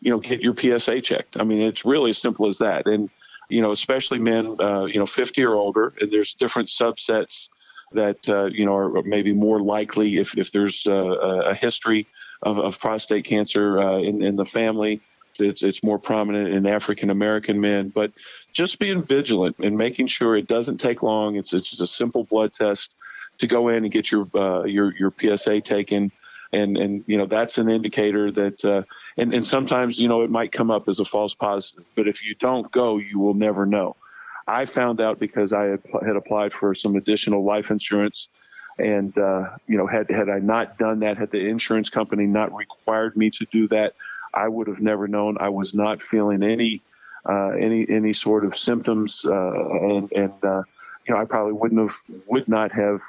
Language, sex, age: English, male, 50-69